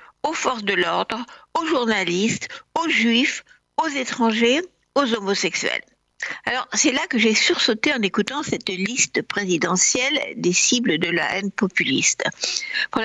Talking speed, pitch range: 140 wpm, 185-275 Hz